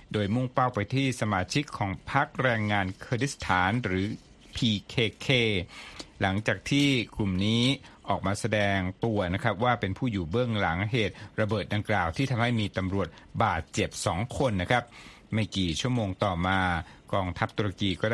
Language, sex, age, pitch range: Thai, male, 60-79, 95-120 Hz